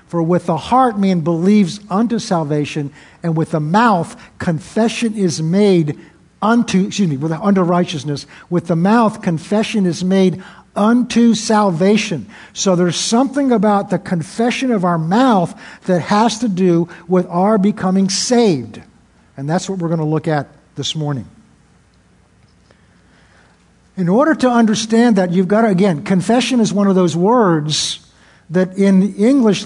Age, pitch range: 60-79, 170-215 Hz